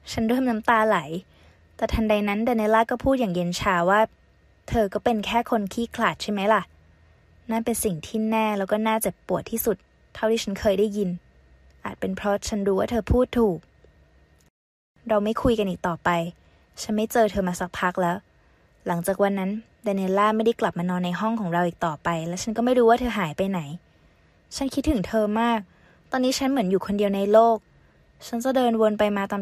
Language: Thai